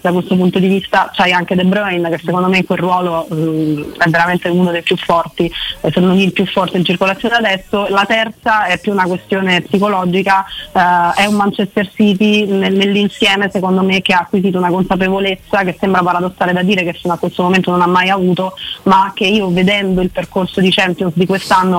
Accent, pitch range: native, 180-200 Hz